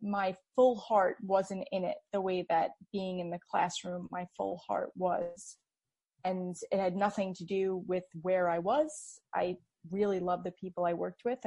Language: English